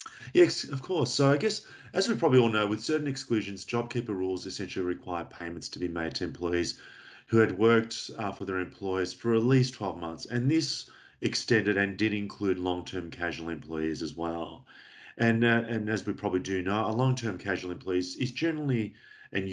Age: 40-59